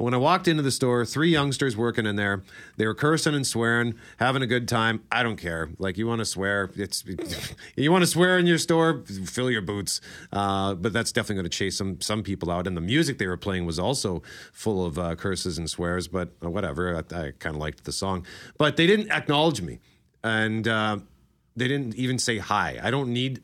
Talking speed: 225 wpm